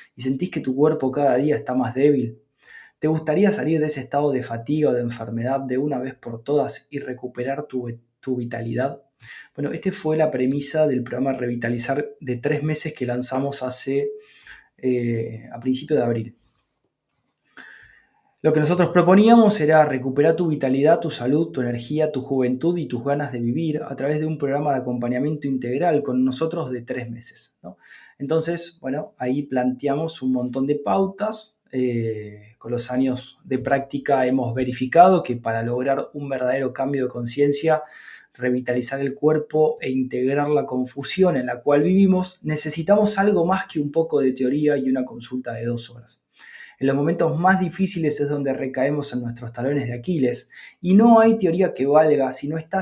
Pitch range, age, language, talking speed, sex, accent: 125-155 Hz, 20-39, Spanish, 175 wpm, male, Argentinian